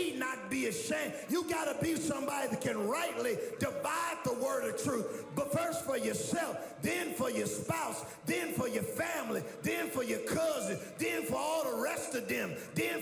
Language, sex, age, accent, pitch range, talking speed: English, male, 50-69, American, 220-295 Hz, 180 wpm